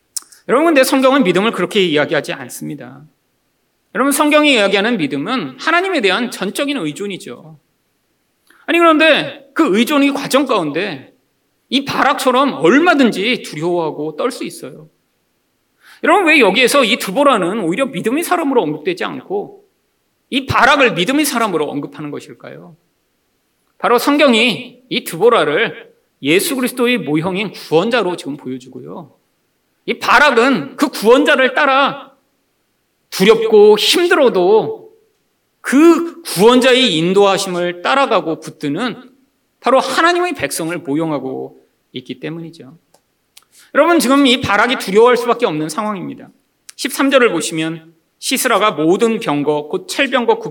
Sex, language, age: male, Korean, 40-59